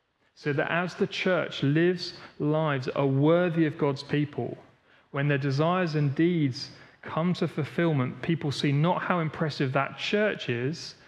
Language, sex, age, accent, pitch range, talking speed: English, male, 30-49, British, 125-170 Hz, 155 wpm